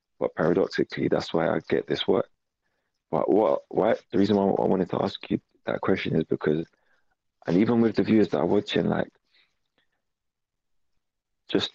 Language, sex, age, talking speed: English, male, 30-49, 170 wpm